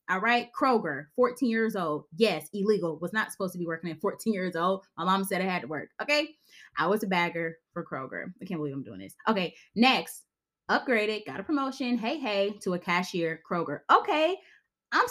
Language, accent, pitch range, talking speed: English, American, 170-265 Hz, 205 wpm